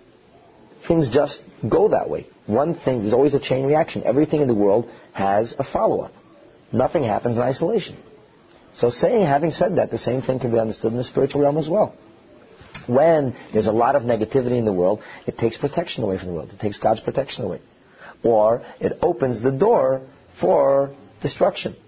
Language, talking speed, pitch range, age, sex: English, 185 wpm, 120-165 Hz, 40-59, male